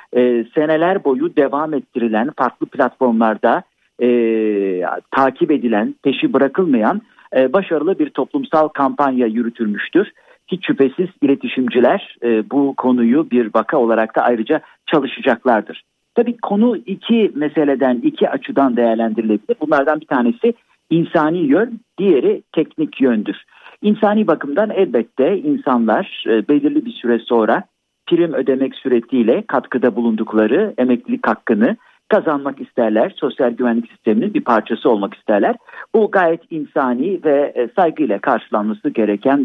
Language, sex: Turkish, male